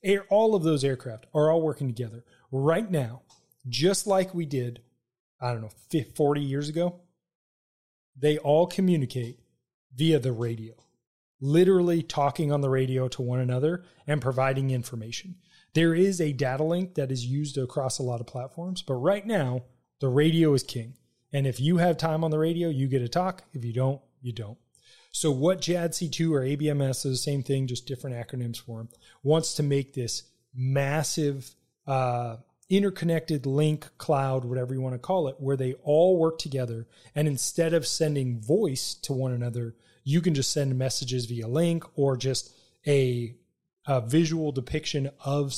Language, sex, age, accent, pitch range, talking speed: English, male, 30-49, American, 125-160 Hz, 170 wpm